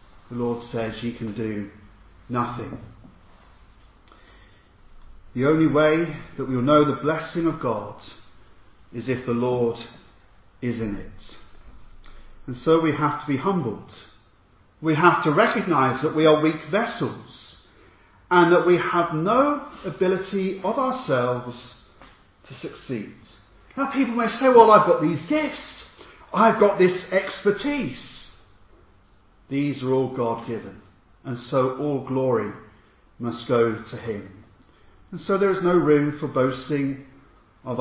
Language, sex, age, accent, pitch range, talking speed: English, male, 40-59, British, 110-155 Hz, 135 wpm